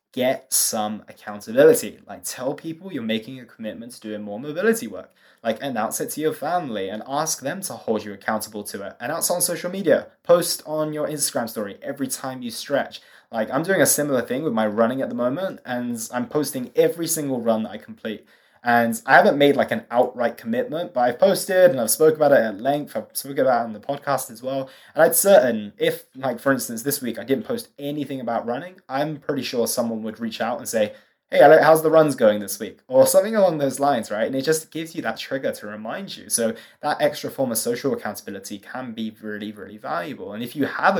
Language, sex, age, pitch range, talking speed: English, male, 20-39, 115-170 Hz, 225 wpm